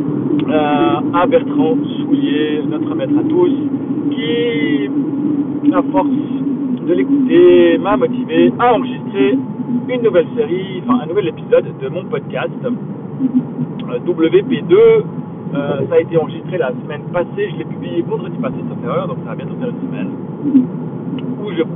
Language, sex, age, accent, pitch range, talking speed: French, male, 50-69, French, 215-270 Hz, 145 wpm